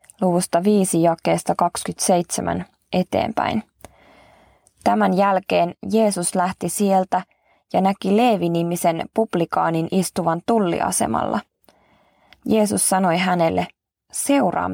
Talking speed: 80 wpm